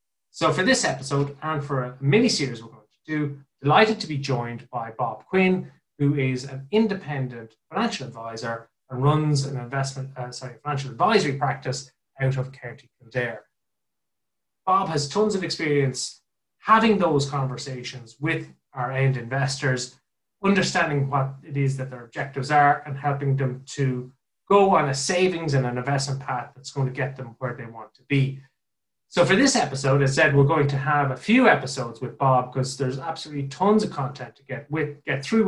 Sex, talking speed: male, 180 wpm